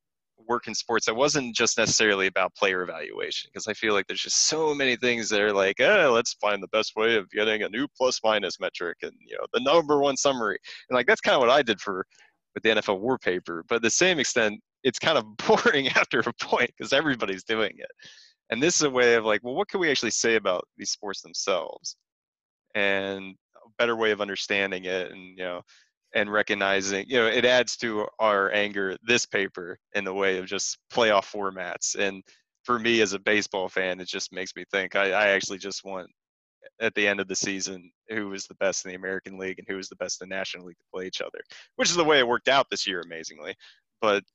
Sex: male